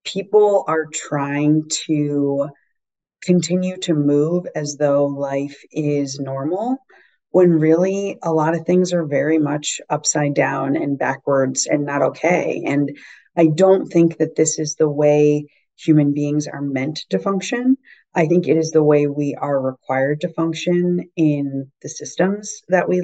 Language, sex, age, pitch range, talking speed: English, female, 30-49, 140-170 Hz, 155 wpm